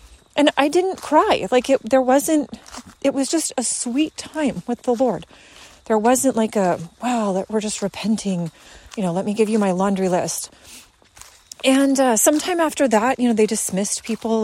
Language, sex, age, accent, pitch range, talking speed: English, female, 30-49, American, 205-285 Hz, 185 wpm